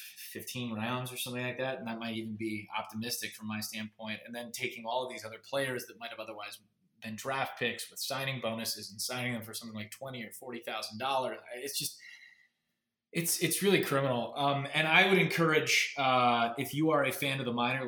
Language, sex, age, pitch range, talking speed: English, male, 20-39, 115-140 Hz, 210 wpm